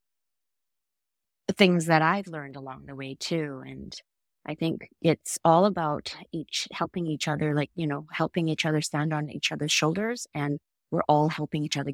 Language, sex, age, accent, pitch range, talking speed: English, female, 30-49, American, 140-170 Hz, 175 wpm